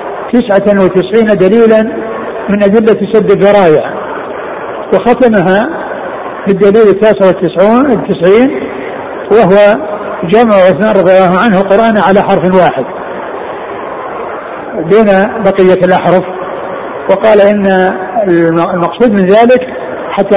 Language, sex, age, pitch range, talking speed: Arabic, male, 60-79, 180-210 Hz, 85 wpm